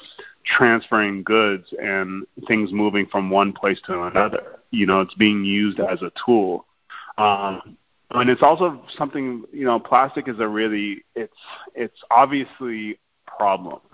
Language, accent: English, American